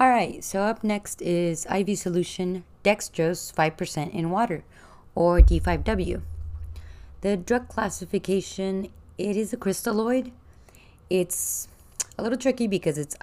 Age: 20-39